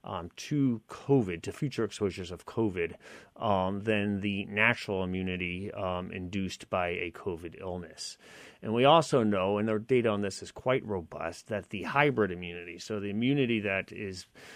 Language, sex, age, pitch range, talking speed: English, male, 30-49, 95-110 Hz, 165 wpm